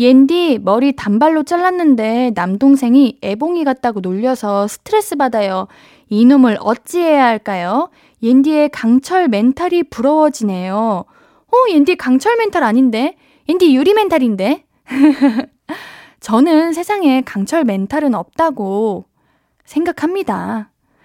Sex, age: female, 20-39